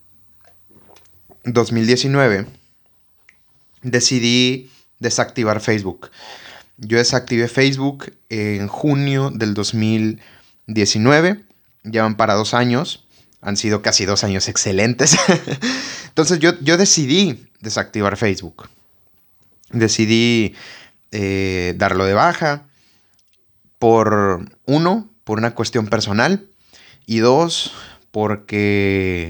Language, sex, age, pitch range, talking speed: Spanish, male, 30-49, 105-130 Hz, 85 wpm